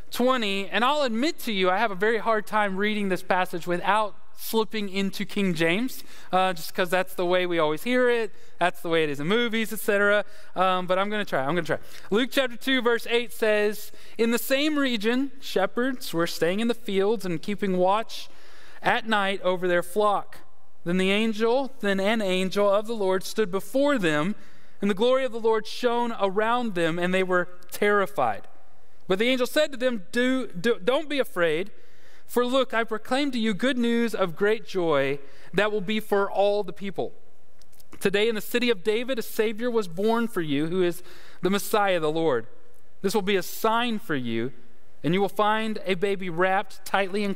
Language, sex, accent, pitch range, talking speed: English, male, American, 180-230 Hz, 200 wpm